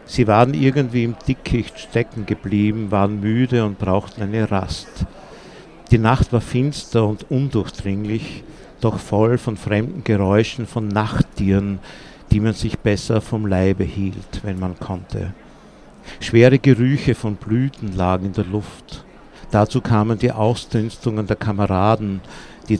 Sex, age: male, 60-79